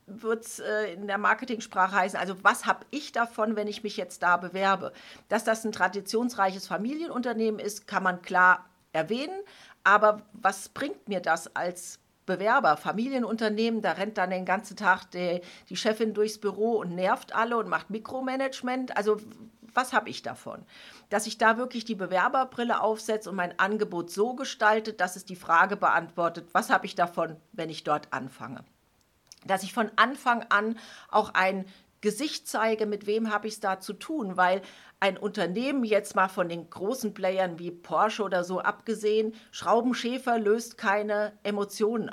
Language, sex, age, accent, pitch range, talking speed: German, female, 50-69, German, 185-225 Hz, 165 wpm